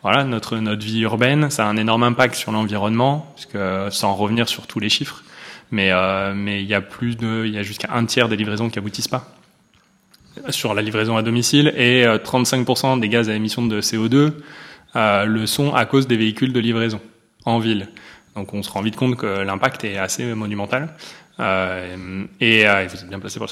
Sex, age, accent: male, 20-39, French